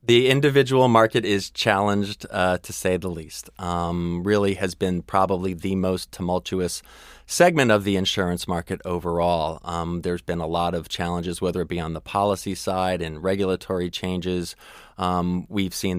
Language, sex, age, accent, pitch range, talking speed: English, male, 30-49, American, 85-100 Hz, 165 wpm